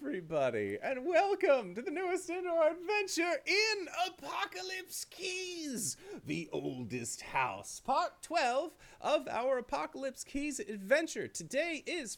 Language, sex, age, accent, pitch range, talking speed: English, male, 30-49, American, 135-225 Hz, 115 wpm